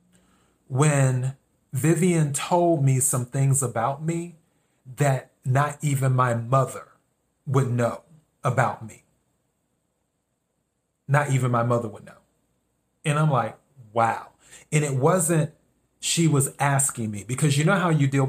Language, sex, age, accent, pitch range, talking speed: English, male, 30-49, American, 125-160 Hz, 130 wpm